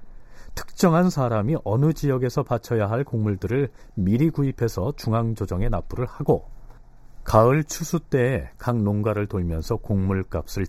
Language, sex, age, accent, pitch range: Korean, male, 40-59, native, 100-150 Hz